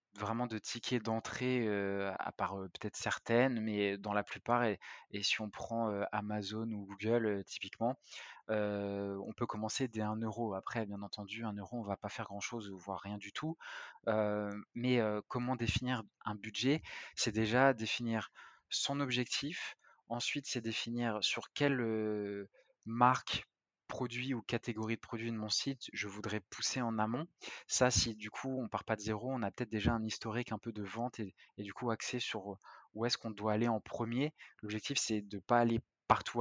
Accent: French